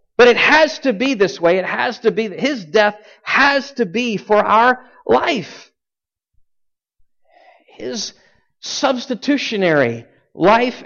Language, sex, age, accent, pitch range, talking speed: English, male, 50-69, American, 175-245 Hz, 125 wpm